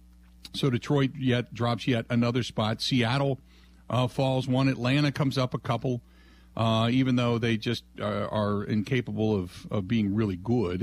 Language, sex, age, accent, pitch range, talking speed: English, male, 50-69, American, 100-130 Hz, 160 wpm